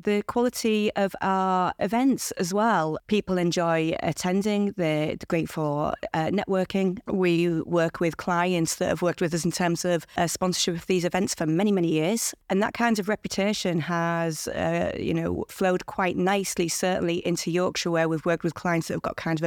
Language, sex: English, female